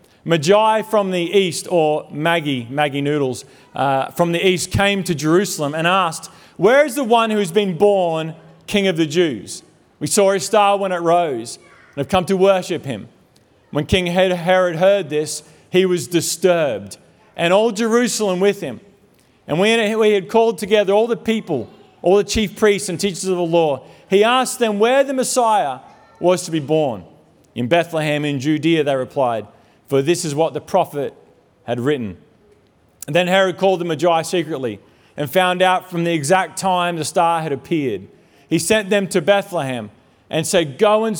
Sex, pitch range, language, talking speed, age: male, 150-200 Hz, English, 180 wpm, 40-59